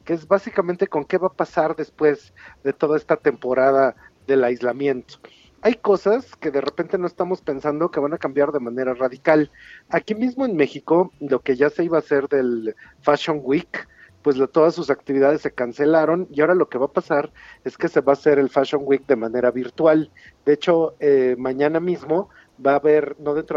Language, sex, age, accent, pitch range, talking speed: Spanish, male, 50-69, Mexican, 135-170 Hz, 205 wpm